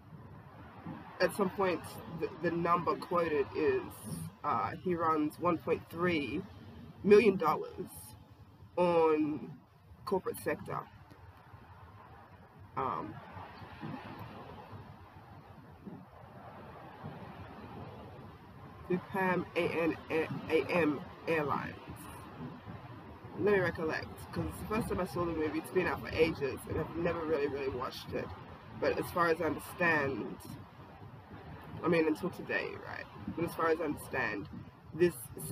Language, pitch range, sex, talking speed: English, 120-175 Hz, female, 105 wpm